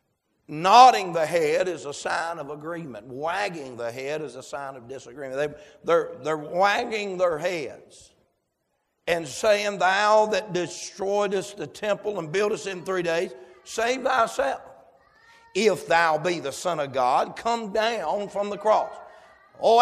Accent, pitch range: American, 165-220 Hz